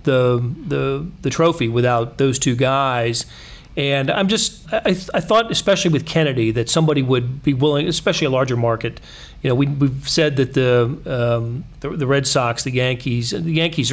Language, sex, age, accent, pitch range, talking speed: English, male, 40-59, American, 125-160 Hz, 185 wpm